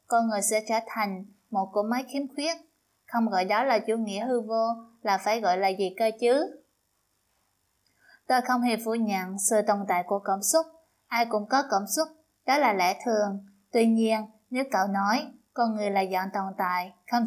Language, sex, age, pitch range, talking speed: Vietnamese, female, 20-39, 200-250 Hz, 200 wpm